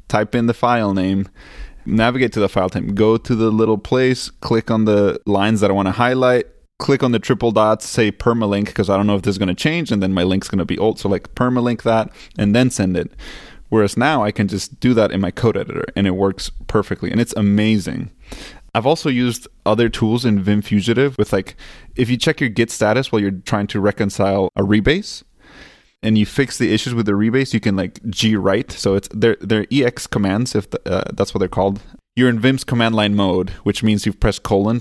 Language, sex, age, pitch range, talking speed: English, male, 20-39, 95-115 Hz, 235 wpm